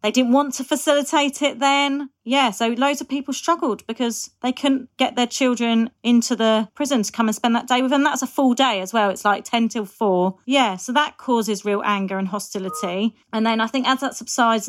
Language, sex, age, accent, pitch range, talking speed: English, female, 30-49, British, 190-230 Hz, 230 wpm